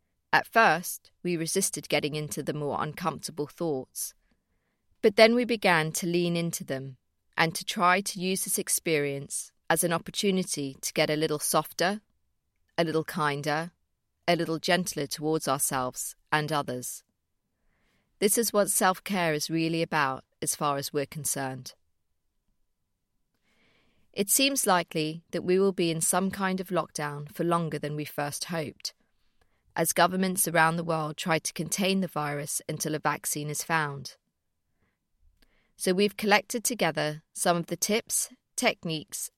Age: 30-49